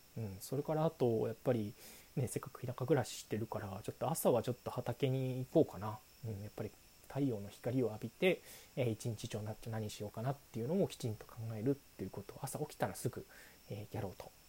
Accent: native